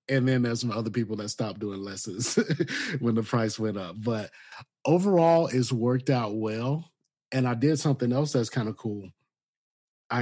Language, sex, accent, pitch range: English, male, American, 110-130 Hz